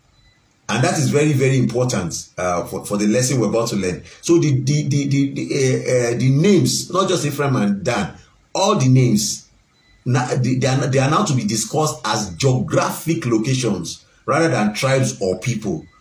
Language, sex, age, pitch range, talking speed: English, male, 50-69, 105-145 Hz, 185 wpm